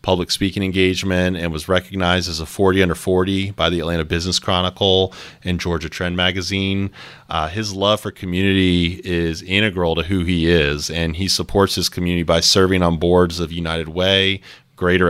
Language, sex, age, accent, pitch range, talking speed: English, male, 30-49, American, 85-95 Hz, 175 wpm